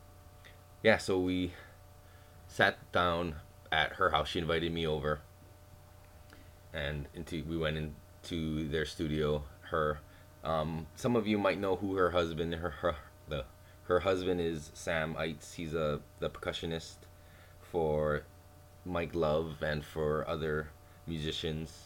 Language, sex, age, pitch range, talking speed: English, male, 20-39, 75-95 Hz, 130 wpm